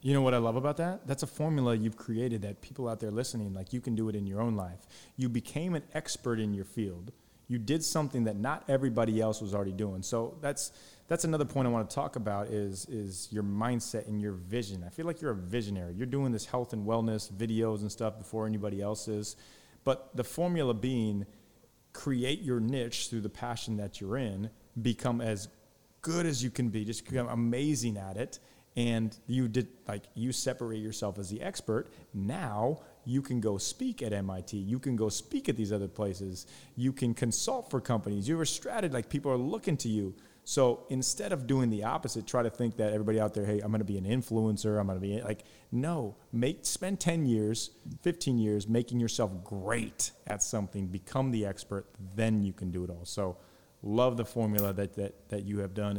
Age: 30-49